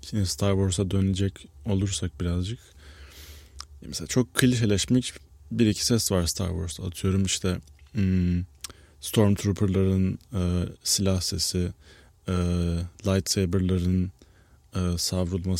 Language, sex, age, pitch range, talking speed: Turkish, male, 20-39, 90-110 Hz, 85 wpm